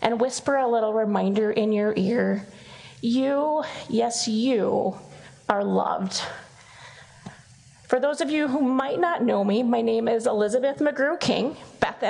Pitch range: 230-330 Hz